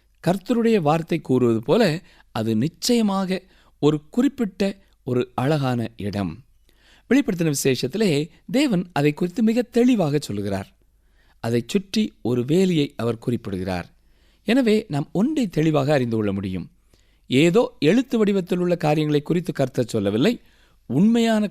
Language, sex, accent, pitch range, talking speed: Tamil, male, native, 125-200 Hz, 115 wpm